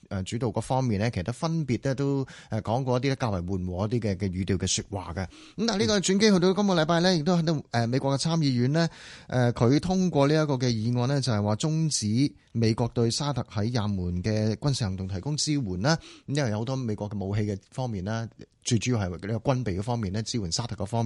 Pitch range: 110-150 Hz